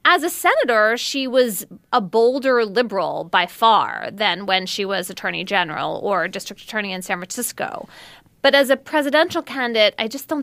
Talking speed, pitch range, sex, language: 175 wpm, 185-245 Hz, female, English